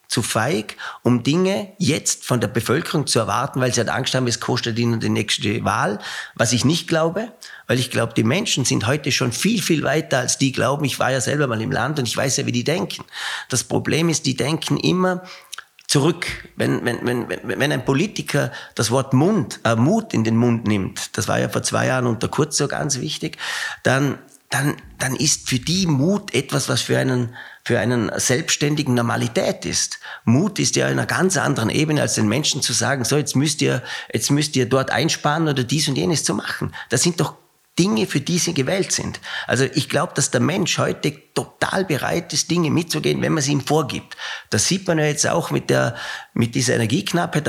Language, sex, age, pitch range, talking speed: German, male, 40-59, 120-160 Hz, 210 wpm